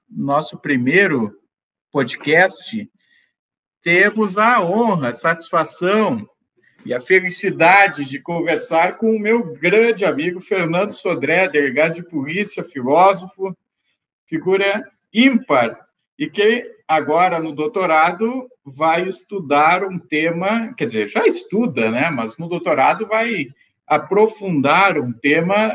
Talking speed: 110 wpm